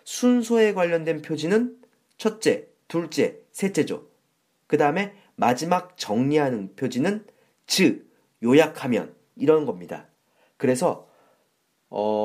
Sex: male